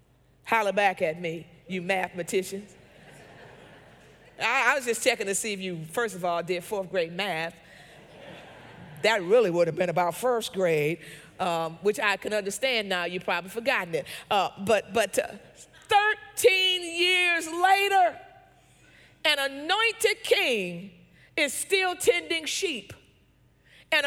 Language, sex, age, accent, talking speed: English, female, 40-59, American, 135 wpm